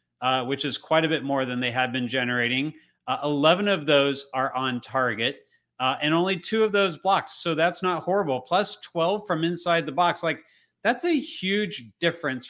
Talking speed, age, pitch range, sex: 195 wpm, 30-49, 130-160 Hz, male